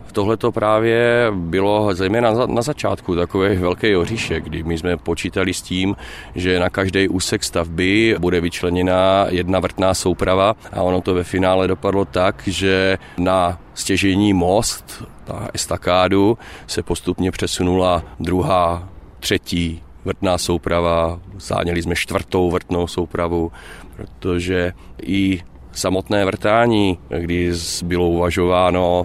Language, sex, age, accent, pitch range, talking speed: Czech, male, 30-49, native, 85-95 Hz, 120 wpm